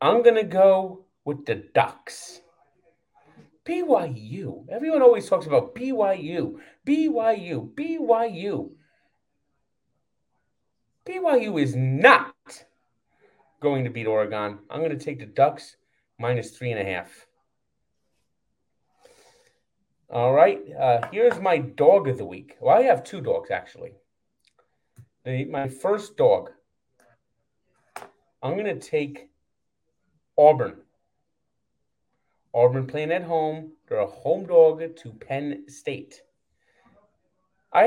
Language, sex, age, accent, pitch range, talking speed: English, male, 40-59, American, 130-190 Hz, 110 wpm